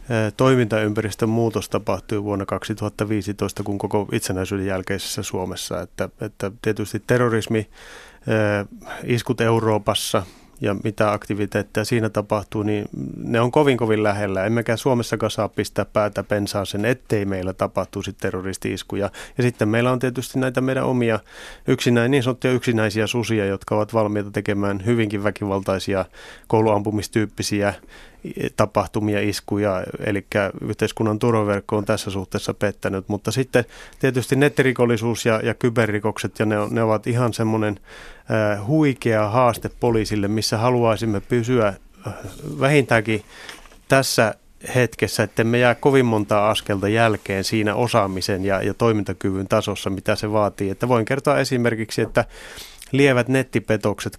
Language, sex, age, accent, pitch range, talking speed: Finnish, male, 30-49, native, 105-120 Hz, 125 wpm